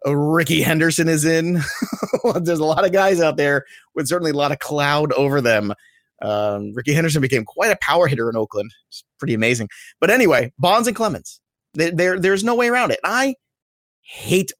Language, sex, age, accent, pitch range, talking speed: English, male, 30-49, American, 125-170 Hz, 190 wpm